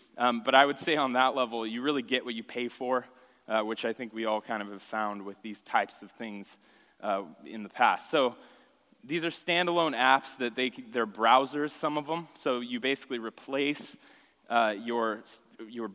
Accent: American